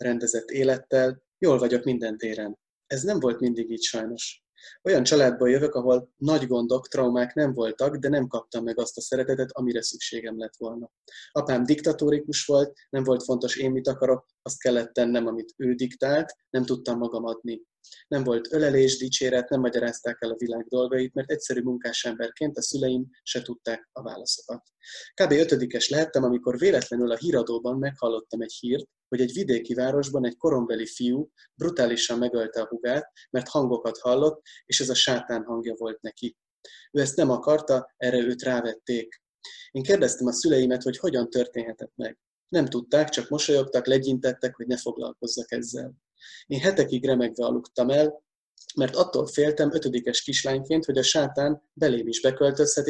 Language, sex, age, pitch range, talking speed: Hungarian, male, 20-39, 120-140 Hz, 160 wpm